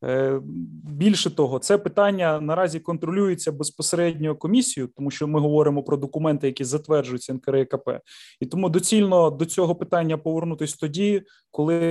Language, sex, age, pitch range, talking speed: Ukrainian, male, 20-39, 150-185 Hz, 130 wpm